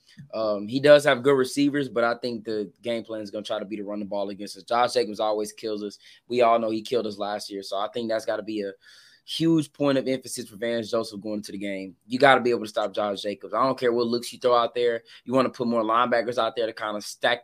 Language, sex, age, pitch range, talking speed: English, male, 20-39, 110-130 Hz, 295 wpm